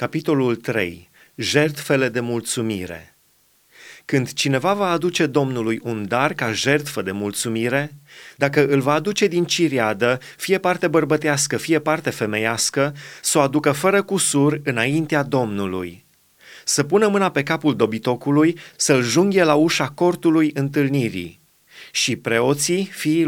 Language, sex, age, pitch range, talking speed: Romanian, male, 30-49, 125-165 Hz, 130 wpm